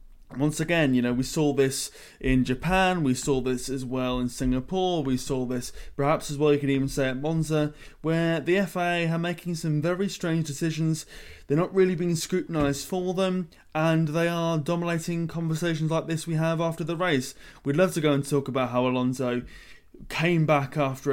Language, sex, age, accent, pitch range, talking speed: English, male, 20-39, British, 135-165 Hz, 195 wpm